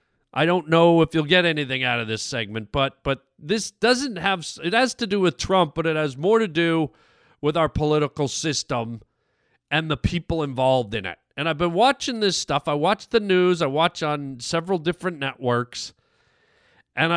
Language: English